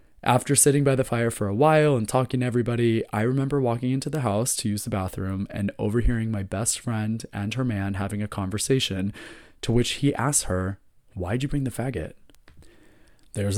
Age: 20-39